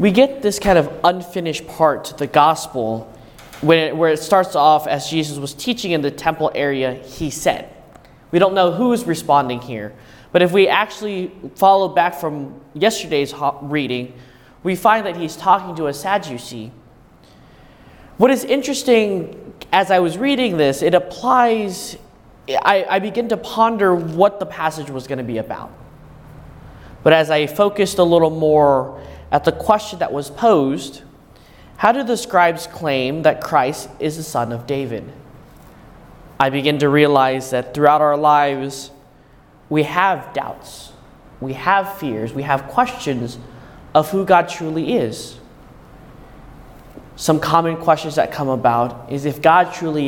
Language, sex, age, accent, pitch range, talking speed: English, male, 20-39, American, 135-185 Hz, 150 wpm